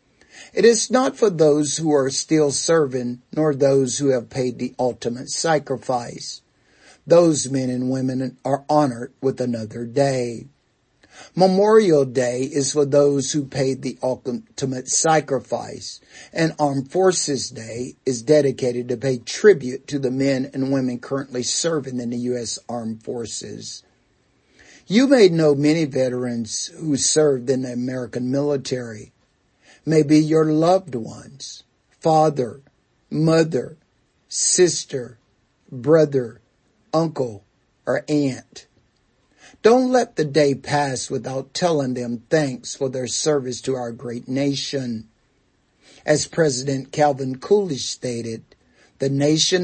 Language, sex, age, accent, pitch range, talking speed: English, male, 50-69, American, 125-150 Hz, 125 wpm